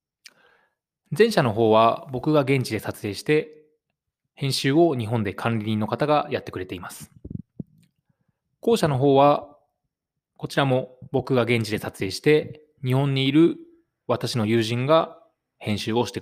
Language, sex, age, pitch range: Japanese, male, 20-39, 110-155 Hz